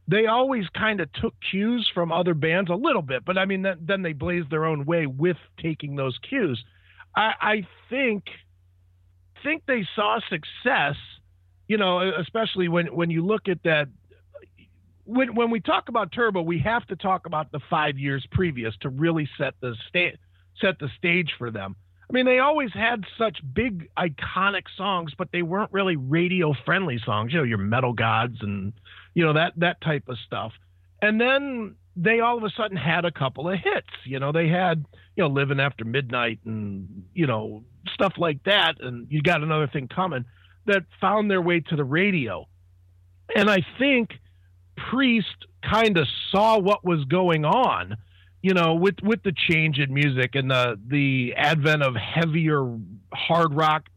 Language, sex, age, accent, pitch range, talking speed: English, male, 50-69, American, 120-190 Hz, 180 wpm